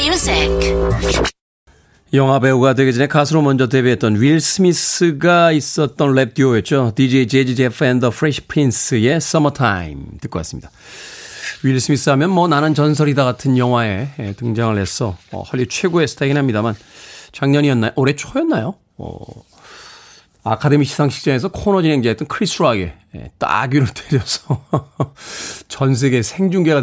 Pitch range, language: 115-150 Hz, Korean